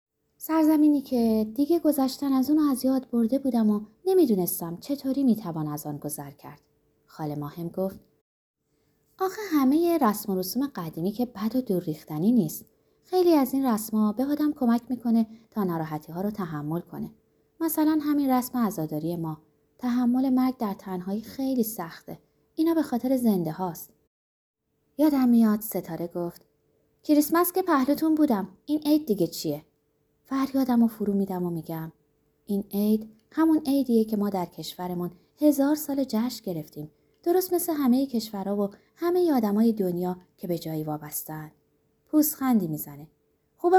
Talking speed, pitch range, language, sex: 150 wpm, 180-275 Hz, Persian, female